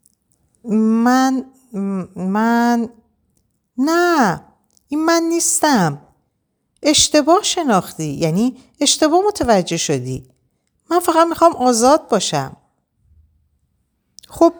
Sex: female